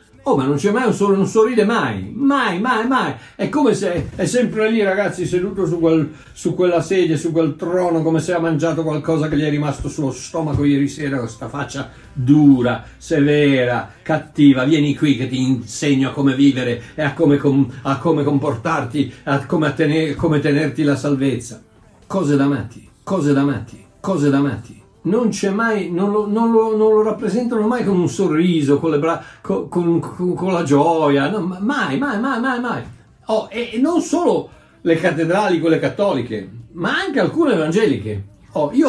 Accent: native